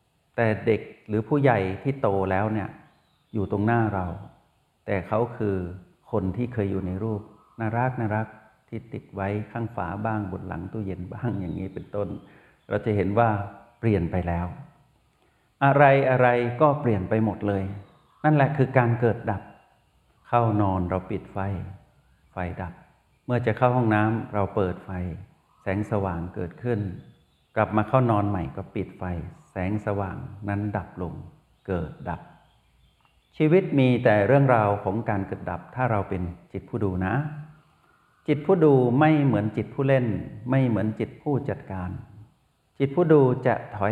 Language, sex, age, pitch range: Thai, male, 60-79, 100-130 Hz